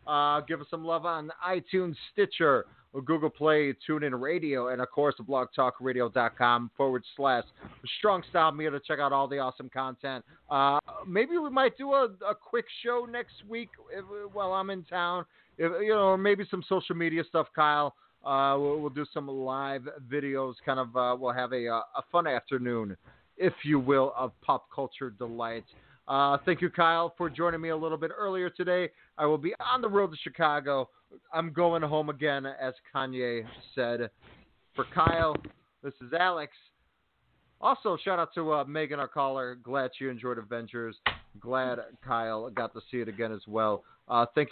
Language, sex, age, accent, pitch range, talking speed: English, male, 30-49, American, 130-170 Hz, 185 wpm